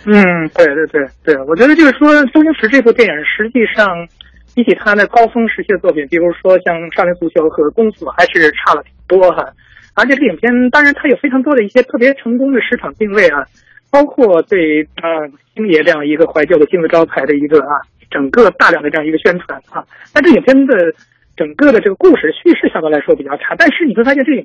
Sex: male